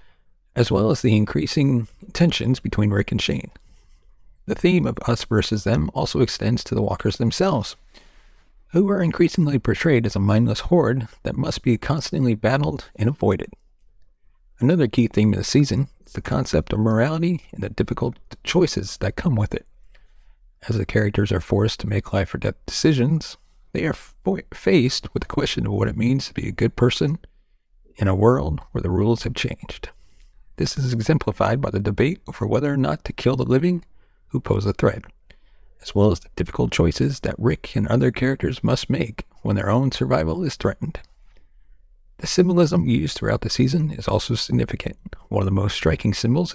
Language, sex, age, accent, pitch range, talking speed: English, male, 40-59, American, 100-135 Hz, 185 wpm